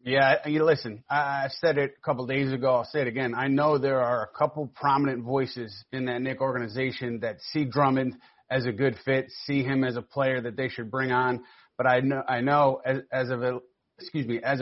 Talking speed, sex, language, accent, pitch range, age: 225 wpm, male, English, American, 125-145 Hz, 30-49